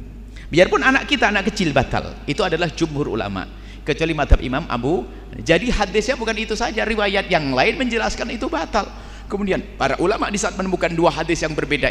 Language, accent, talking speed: Indonesian, native, 170 wpm